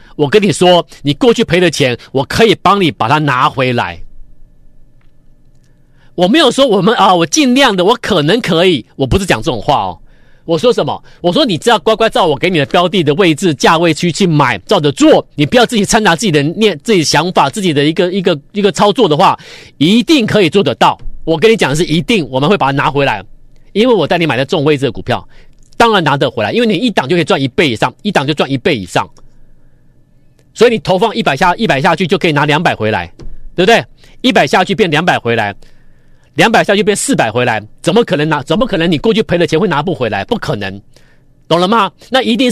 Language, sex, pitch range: Chinese, male, 145-220 Hz